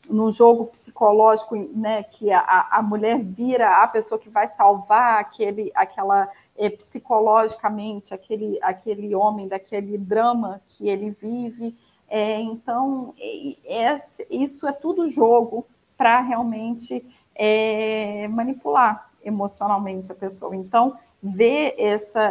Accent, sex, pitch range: Brazilian, female, 205-225 Hz